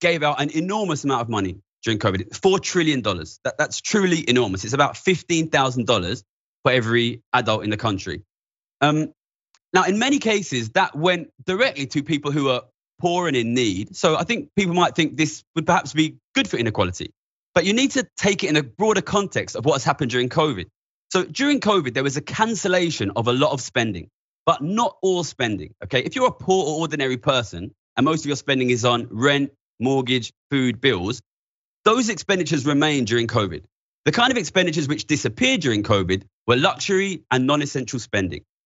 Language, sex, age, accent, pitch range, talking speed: English, male, 20-39, British, 115-180 Hz, 190 wpm